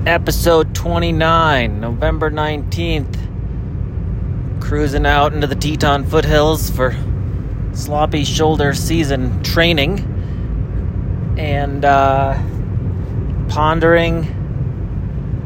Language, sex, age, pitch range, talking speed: English, male, 30-49, 105-135 Hz, 70 wpm